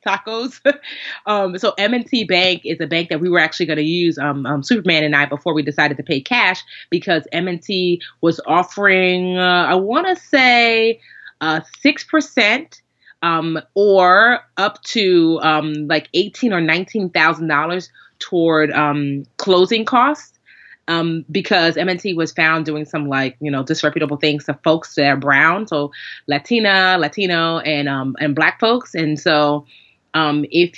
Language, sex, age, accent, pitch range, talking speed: English, female, 30-49, American, 150-185 Hz, 170 wpm